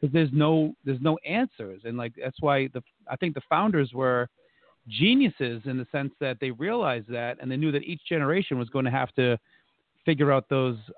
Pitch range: 120-150 Hz